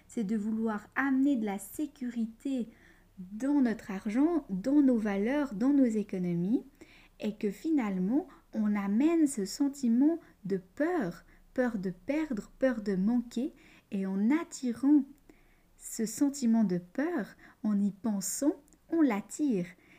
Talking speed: 130 wpm